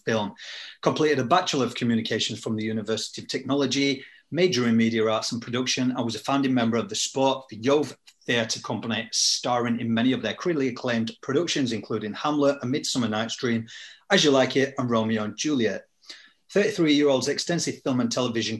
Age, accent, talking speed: 30-49, British, 185 wpm